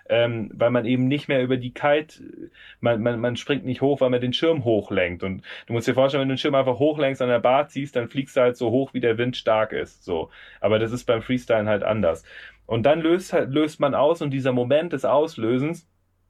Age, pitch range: 30-49, 115-150 Hz